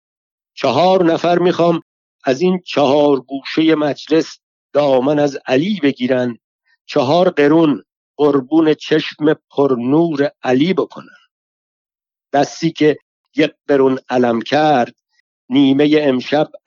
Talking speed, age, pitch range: 100 wpm, 60-79, 120-155 Hz